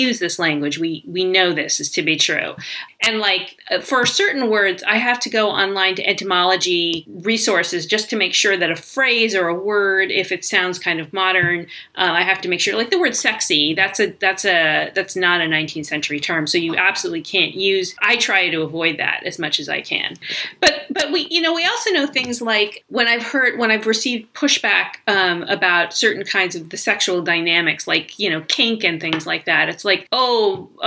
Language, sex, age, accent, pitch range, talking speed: English, female, 40-59, American, 175-230 Hz, 220 wpm